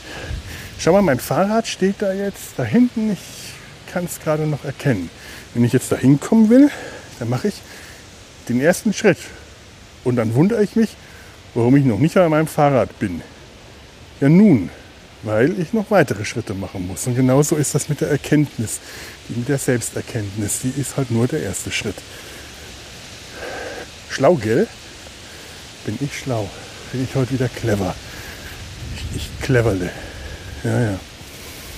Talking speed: 155 wpm